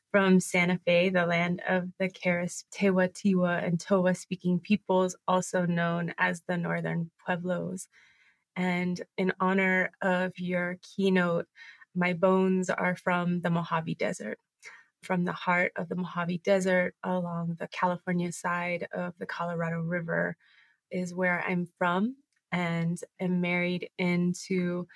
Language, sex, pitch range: English, female, 175-195 Hz